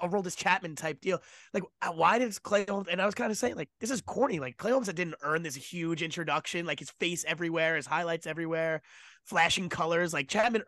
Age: 20-39